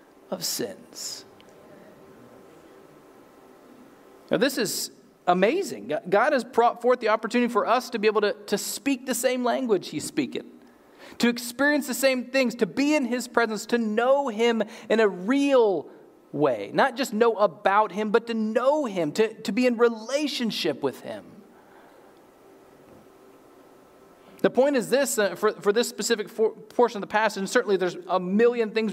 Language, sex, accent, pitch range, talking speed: English, male, American, 215-260 Hz, 160 wpm